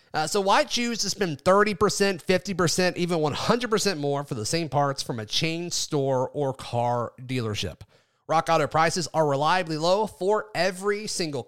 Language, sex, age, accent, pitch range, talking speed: English, male, 30-49, American, 145-195 Hz, 160 wpm